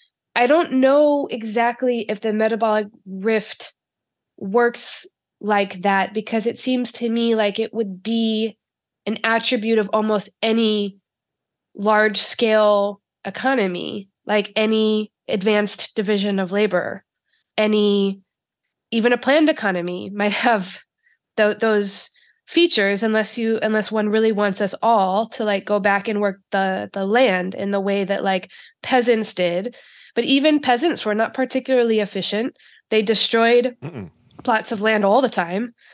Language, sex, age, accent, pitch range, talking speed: English, female, 20-39, American, 200-230 Hz, 135 wpm